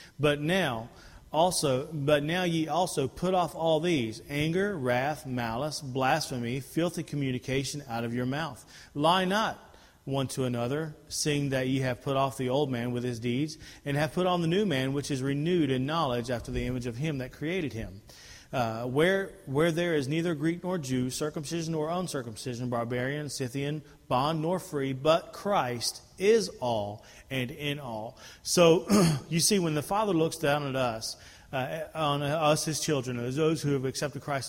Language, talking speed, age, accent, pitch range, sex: English, 175 wpm, 40-59, American, 130-165 Hz, male